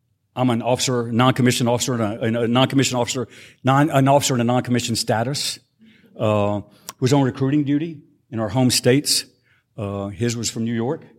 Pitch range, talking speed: 110-130 Hz, 165 wpm